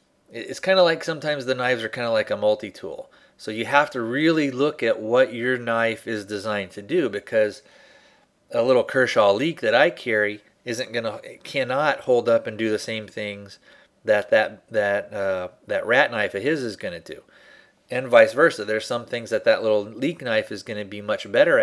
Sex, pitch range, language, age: male, 105-135 Hz, English, 30-49